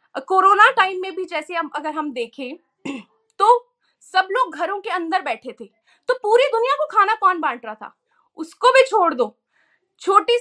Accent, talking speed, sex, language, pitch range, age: native, 180 wpm, female, Hindi, 295-395 Hz, 20-39